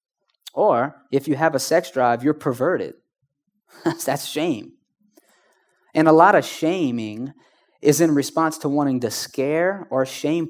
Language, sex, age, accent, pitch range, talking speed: English, male, 20-39, American, 125-160 Hz, 145 wpm